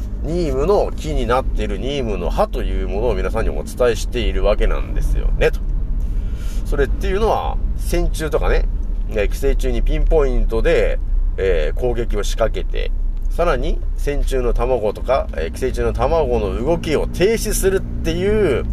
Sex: male